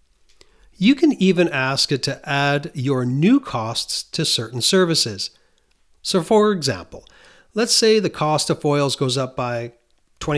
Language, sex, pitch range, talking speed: English, male, 125-165 Hz, 150 wpm